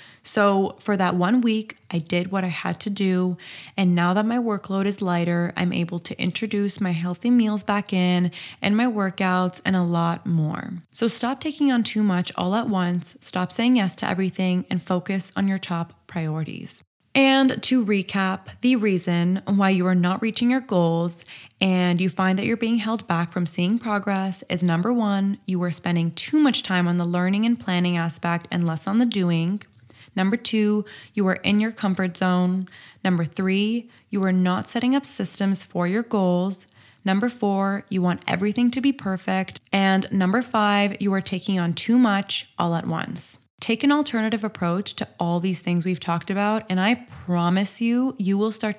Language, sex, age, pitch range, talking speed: English, female, 10-29, 180-215 Hz, 190 wpm